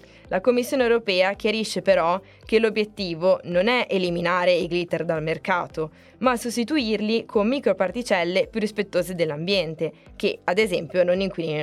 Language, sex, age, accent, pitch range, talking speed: Italian, female, 20-39, native, 175-215 Hz, 135 wpm